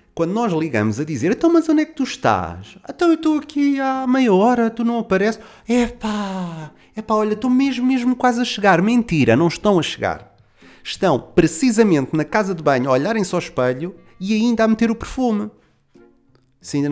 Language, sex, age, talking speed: Portuguese, male, 30-49, 190 wpm